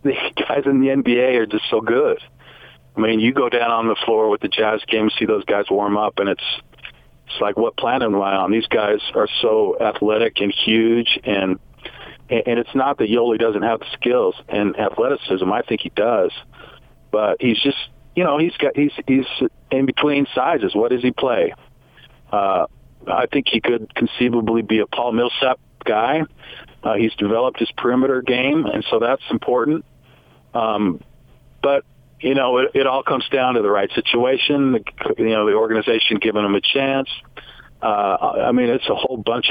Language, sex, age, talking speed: English, male, 50-69, 190 wpm